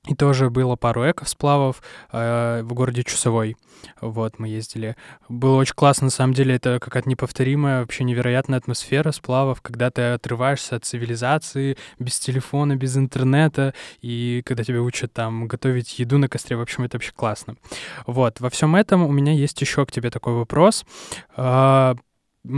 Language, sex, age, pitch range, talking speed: Russian, male, 20-39, 125-150 Hz, 160 wpm